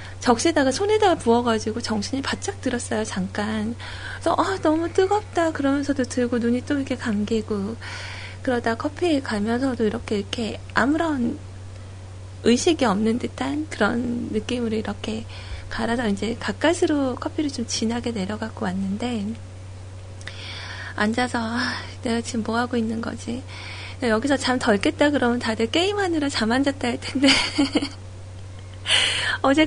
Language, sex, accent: Korean, female, native